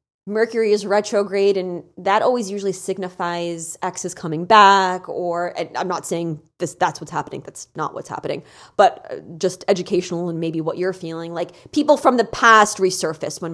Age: 20-39